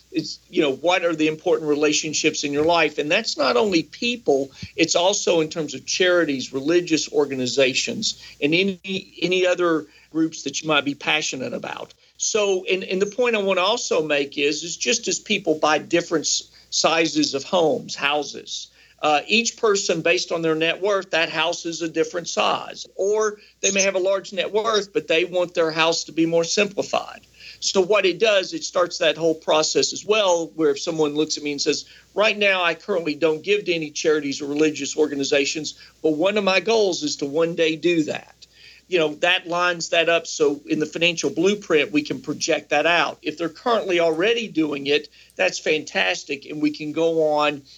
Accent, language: American, English